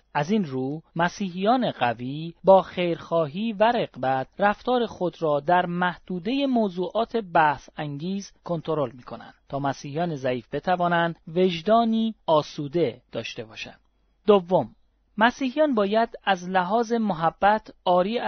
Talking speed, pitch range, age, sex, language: 110 wpm, 150-200 Hz, 40-59, male, Persian